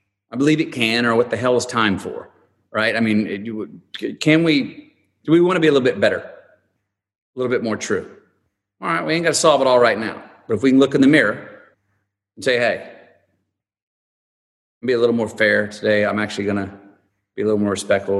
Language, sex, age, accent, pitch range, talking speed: English, male, 40-59, American, 100-135 Hz, 230 wpm